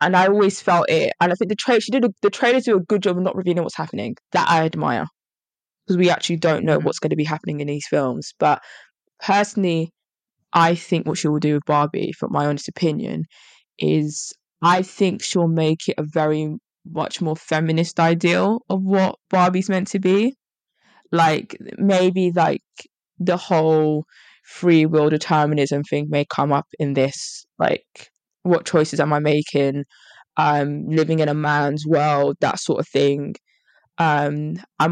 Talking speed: 175 wpm